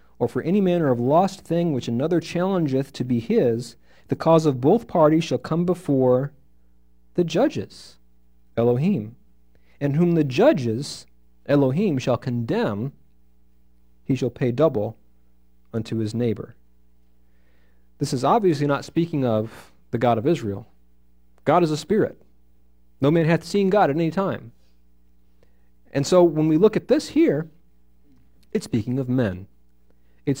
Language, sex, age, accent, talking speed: English, male, 50-69, American, 145 wpm